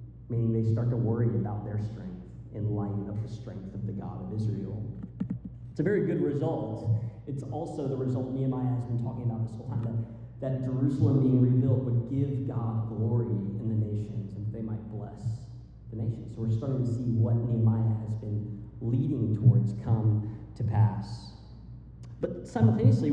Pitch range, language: 115-140 Hz, English